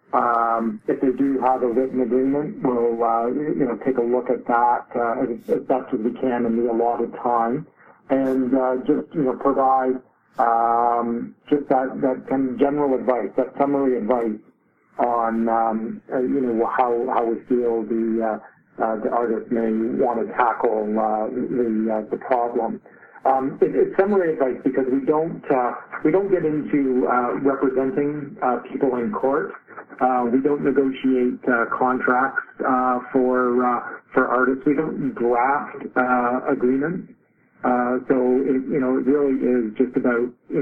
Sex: male